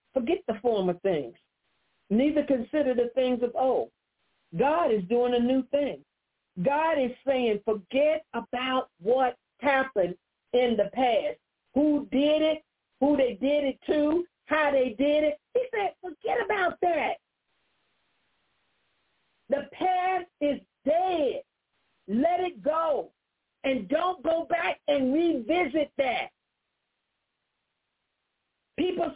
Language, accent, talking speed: English, American, 120 wpm